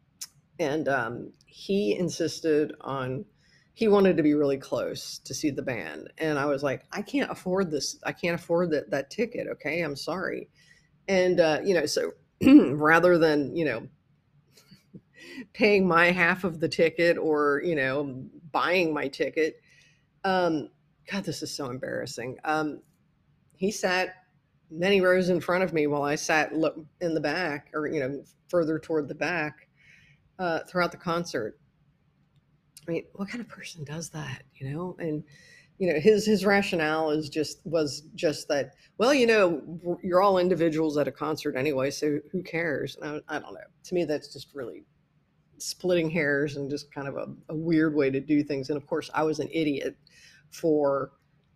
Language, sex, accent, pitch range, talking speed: English, female, American, 150-175 Hz, 175 wpm